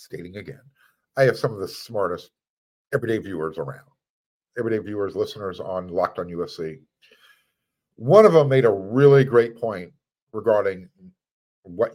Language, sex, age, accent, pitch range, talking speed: English, male, 50-69, American, 105-145 Hz, 140 wpm